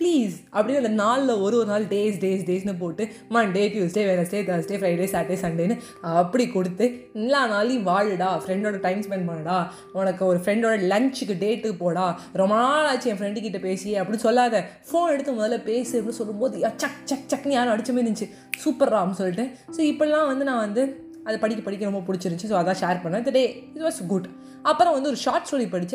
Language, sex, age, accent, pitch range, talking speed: Tamil, female, 20-39, native, 185-255 Hz, 180 wpm